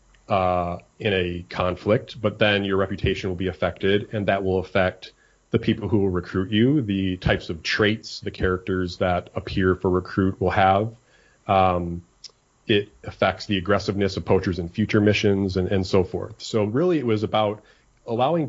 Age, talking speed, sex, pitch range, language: 30-49, 170 wpm, male, 95-105 Hz, English